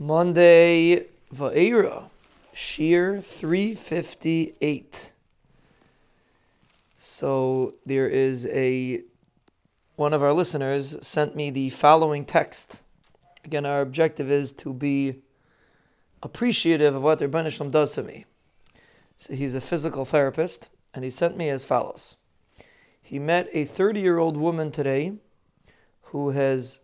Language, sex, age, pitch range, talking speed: English, male, 30-49, 140-165 Hz, 110 wpm